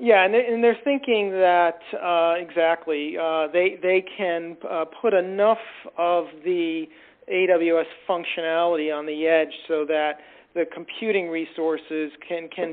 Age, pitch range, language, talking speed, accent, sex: 40-59, 150-170 Hz, English, 130 wpm, American, male